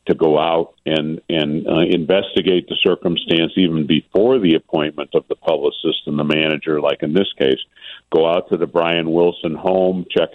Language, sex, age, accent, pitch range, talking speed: English, male, 50-69, American, 80-95 Hz, 180 wpm